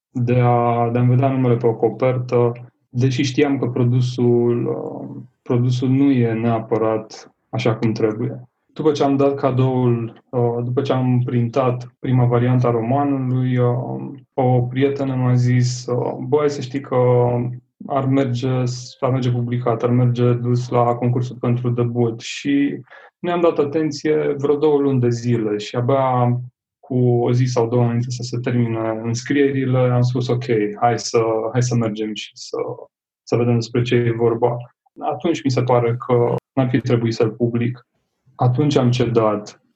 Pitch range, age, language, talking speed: 120-130 Hz, 20-39, Romanian, 155 wpm